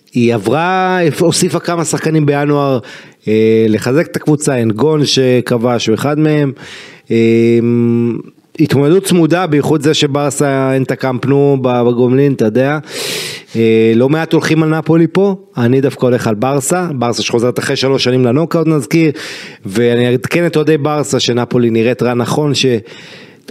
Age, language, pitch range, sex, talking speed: 30-49, Hebrew, 125-155 Hz, male, 150 wpm